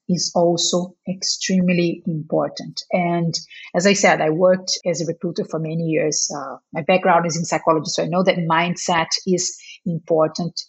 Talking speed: 165 wpm